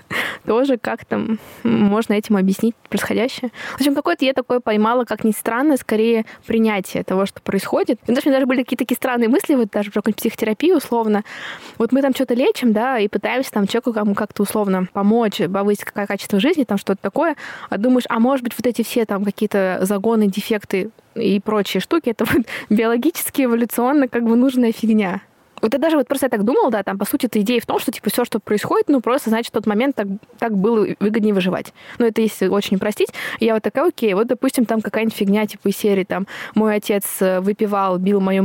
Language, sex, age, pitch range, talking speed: Russian, female, 20-39, 205-250 Hz, 210 wpm